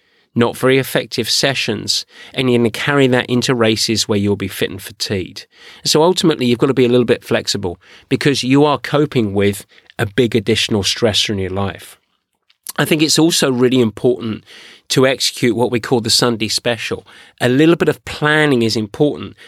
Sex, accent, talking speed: male, British, 180 wpm